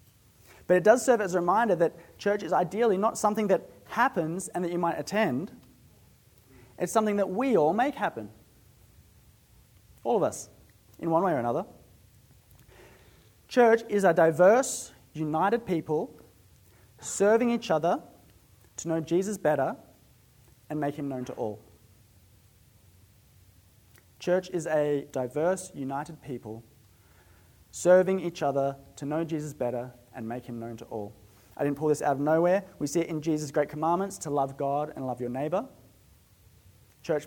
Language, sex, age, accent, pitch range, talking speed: English, male, 30-49, Australian, 110-165 Hz, 155 wpm